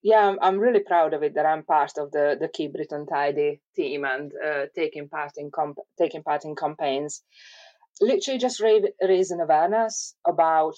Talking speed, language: 175 wpm, English